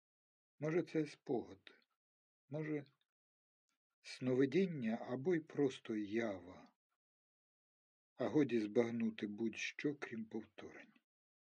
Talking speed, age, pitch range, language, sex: 80 wpm, 50-69, 105-135 Hz, Ukrainian, male